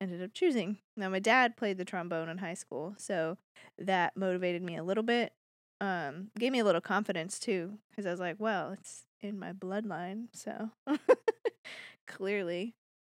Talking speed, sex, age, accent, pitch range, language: 170 wpm, female, 20-39, American, 180-215 Hz, English